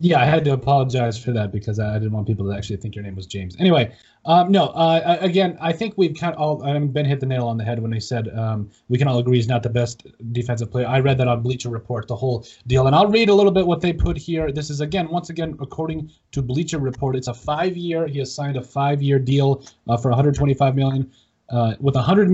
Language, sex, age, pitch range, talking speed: English, male, 20-39, 120-155 Hz, 260 wpm